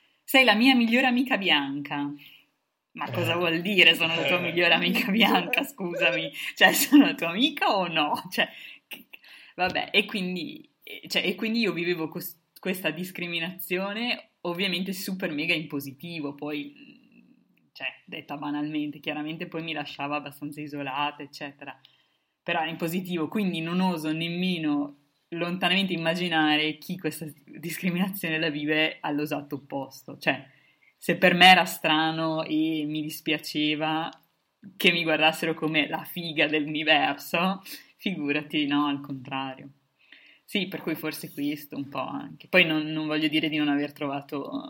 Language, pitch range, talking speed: Italian, 145-180 Hz, 135 wpm